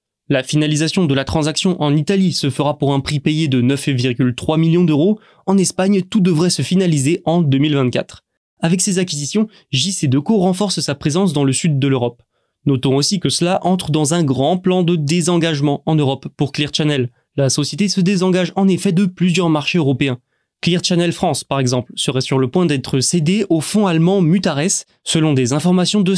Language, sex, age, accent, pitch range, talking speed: French, male, 20-39, French, 140-185 Hz, 190 wpm